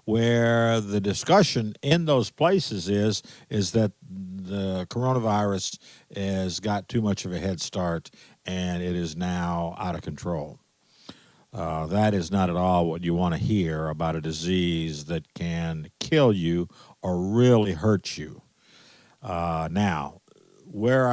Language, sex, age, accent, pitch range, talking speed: English, male, 50-69, American, 90-115 Hz, 145 wpm